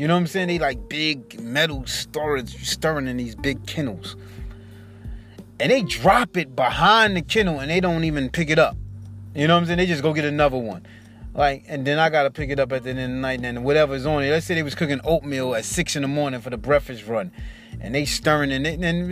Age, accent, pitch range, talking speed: 30-49, American, 110-155 Hz, 250 wpm